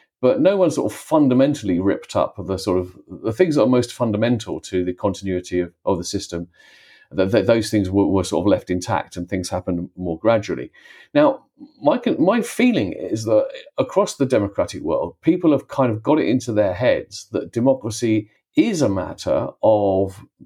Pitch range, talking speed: 100-135 Hz, 190 wpm